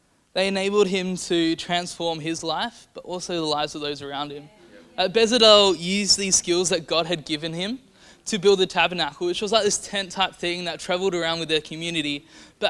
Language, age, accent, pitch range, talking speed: English, 20-39, Australian, 155-190 Hz, 200 wpm